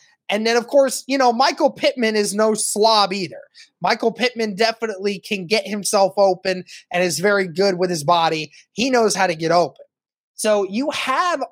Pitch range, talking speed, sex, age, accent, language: 180-225 Hz, 180 wpm, male, 20-39, American, English